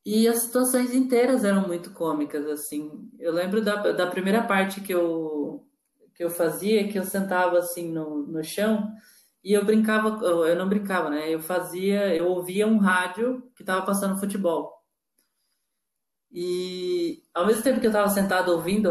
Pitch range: 165-215 Hz